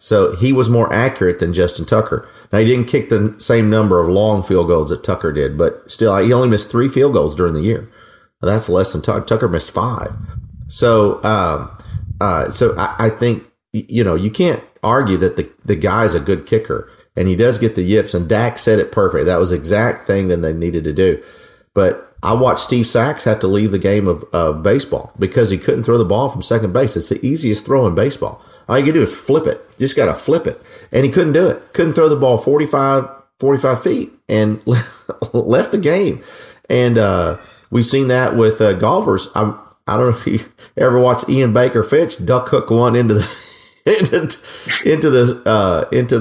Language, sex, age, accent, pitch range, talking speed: English, male, 40-59, American, 105-135 Hz, 220 wpm